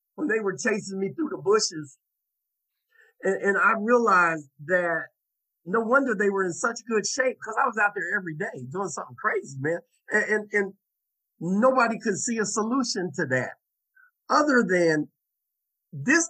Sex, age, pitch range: male, 50-69, 155-240 Hz